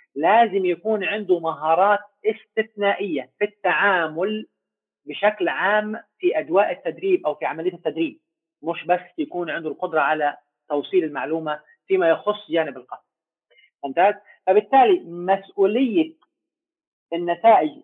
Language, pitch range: English, 170-255 Hz